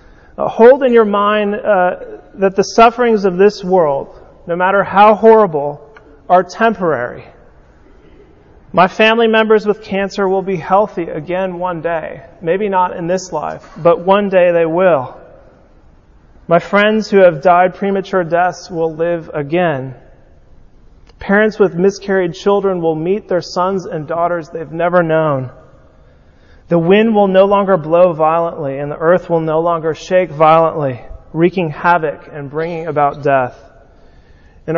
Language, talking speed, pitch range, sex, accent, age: English, 145 wpm, 155-195 Hz, male, American, 30-49